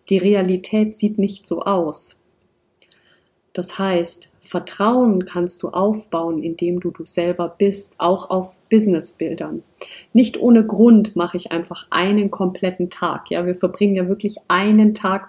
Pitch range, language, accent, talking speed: 175-205 Hz, German, German, 140 wpm